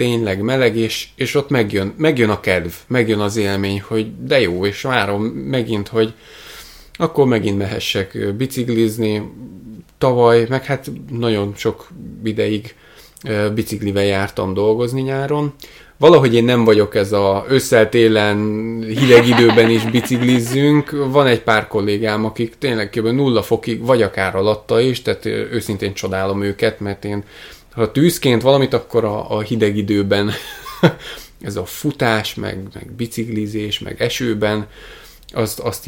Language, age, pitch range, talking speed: Hungarian, 20-39, 105-130 Hz, 135 wpm